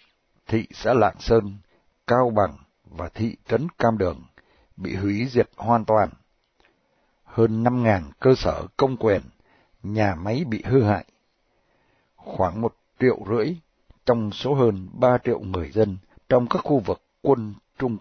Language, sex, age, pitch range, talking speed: Vietnamese, male, 60-79, 100-125 Hz, 150 wpm